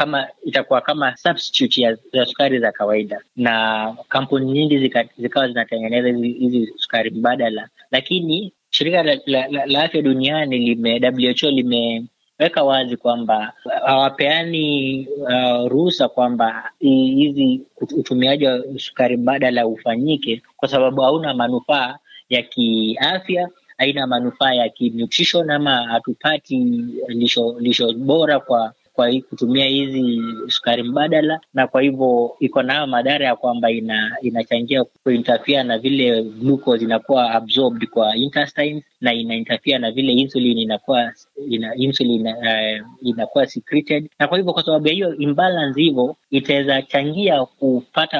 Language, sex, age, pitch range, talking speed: Swahili, male, 20-39, 120-145 Hz, 115 wpm